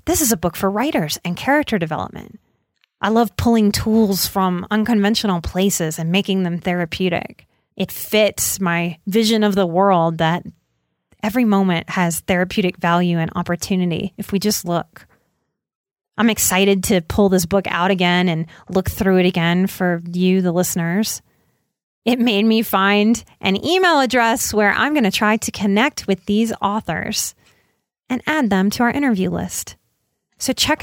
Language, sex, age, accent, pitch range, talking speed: English, female, 30-49, American, 190-235 Hz, 160 wpm